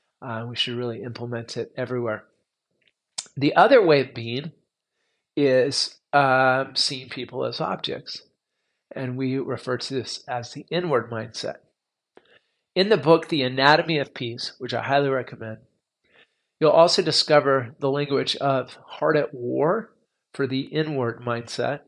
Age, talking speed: 40-59, 140 wpm